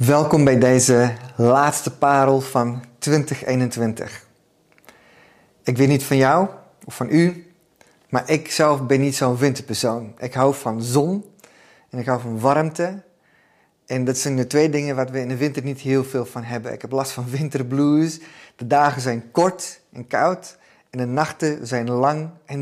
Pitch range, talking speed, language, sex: 125-145 Hz, 170 wpm, Dutch, male